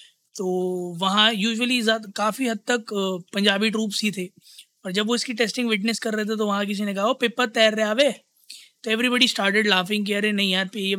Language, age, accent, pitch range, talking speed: Hindi, 20-39, native, 180-225 Hz, 210 wpm